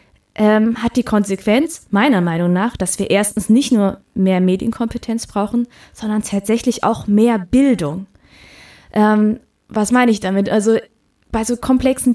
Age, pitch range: 20-39, 190-230 Hz